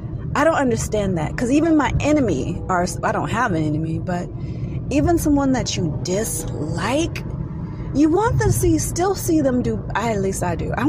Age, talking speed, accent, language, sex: 30-49, 185 wpm, American, English, female